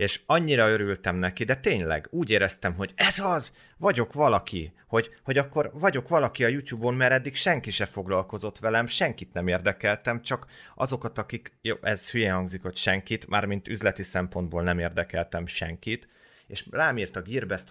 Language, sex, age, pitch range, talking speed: English, male, 30-49, 90-115 Hz, 165 wpm